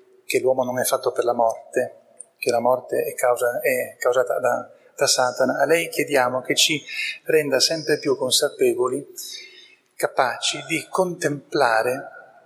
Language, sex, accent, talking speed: Italian, male, native, 140 wpm